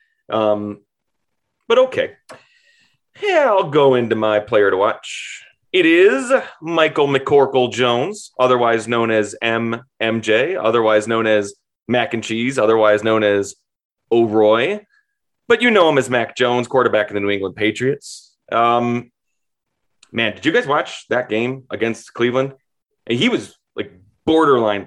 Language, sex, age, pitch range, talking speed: English, male, 30-49, 110-150 Hz, 140 wpm